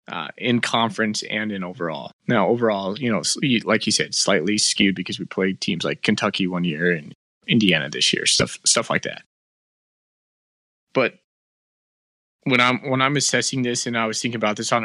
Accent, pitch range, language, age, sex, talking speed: American, 95-120 Hz, English, 20-39, male, 180 wpm